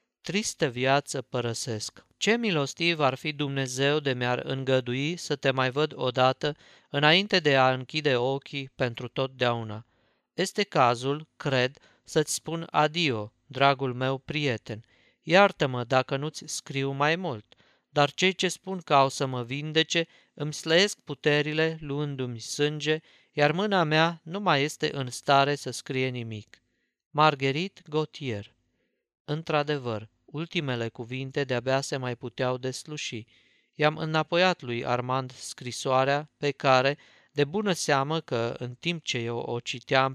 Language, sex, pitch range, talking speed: Romanian, male, 125-155 Hz, 135 wpm